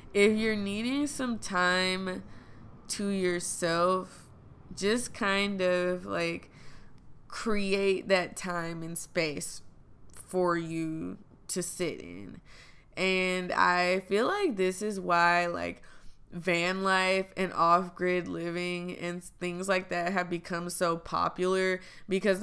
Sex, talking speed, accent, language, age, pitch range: female, 115 wpm, American, English, 20-39, 175-210 Hz